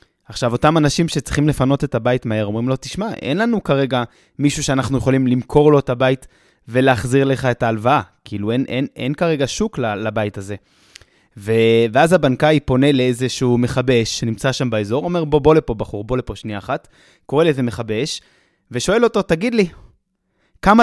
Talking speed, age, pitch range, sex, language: 175 wpm, 20-39, 125-175 Hz, male, Hebrew